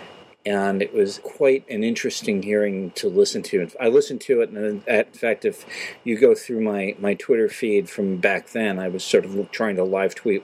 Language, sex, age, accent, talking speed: English, male, 50-69, American, 200 wpm